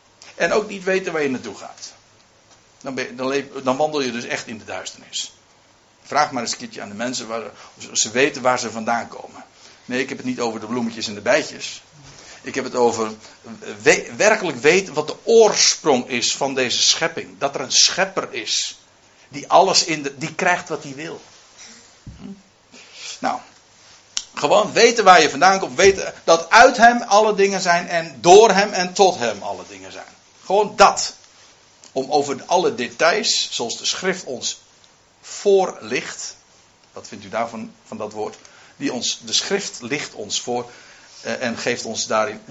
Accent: Dutch